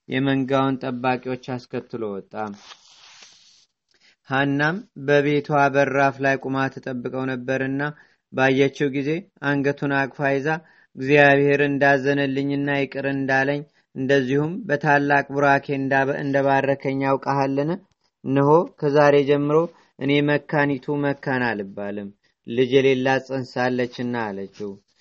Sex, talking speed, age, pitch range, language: male, 90 wpm, 30-49, 135-150 Hz, Amharic